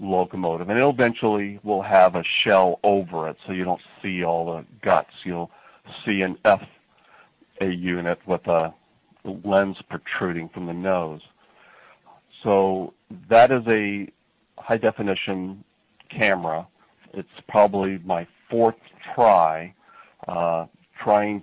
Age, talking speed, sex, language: 40-59, 120 wpm, male, English